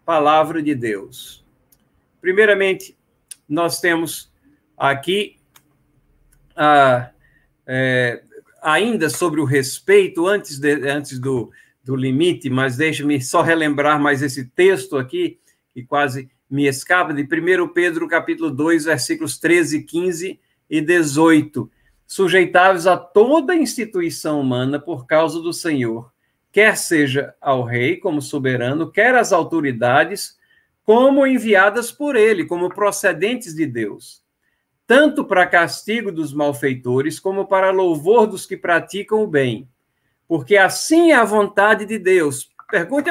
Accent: Brazilian